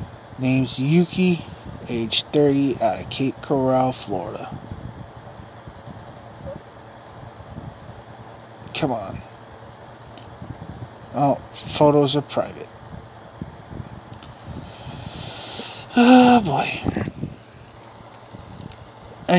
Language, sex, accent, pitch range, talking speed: English, male, American, 110-140 Hz, 55 wpm